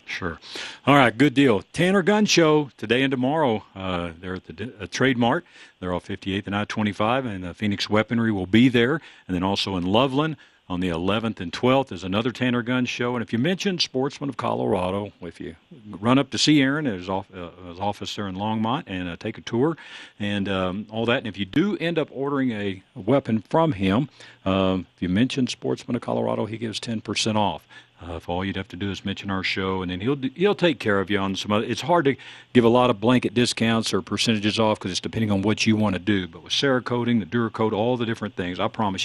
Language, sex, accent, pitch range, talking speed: English, male, American, 95-125 Hz, 235 wpm